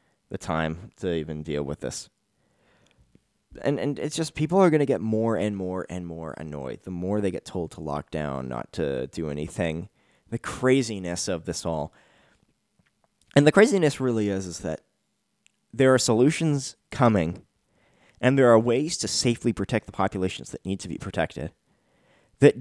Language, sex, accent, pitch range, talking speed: English, male, American, 85-110 Hz, 175 wpm